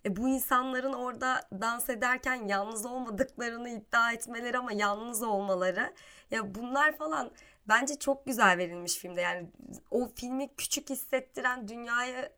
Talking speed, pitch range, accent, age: 130 wpm, 215-275 Hz, native, 20-39